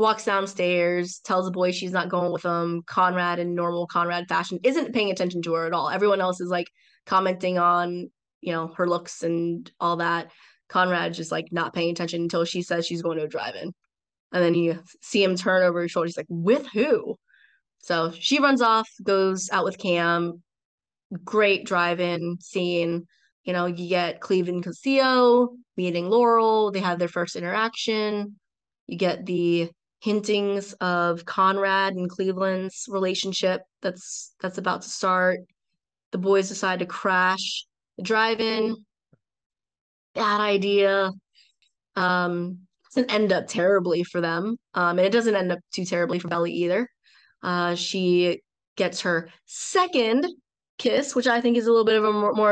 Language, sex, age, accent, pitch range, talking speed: English, female, 20-39, American, 175-210 Hz, 165 wpm